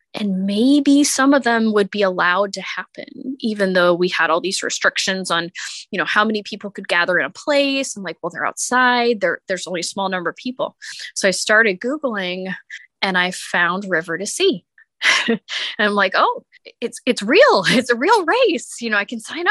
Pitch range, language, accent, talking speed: 185-245 Hz, English, American, 205 wpm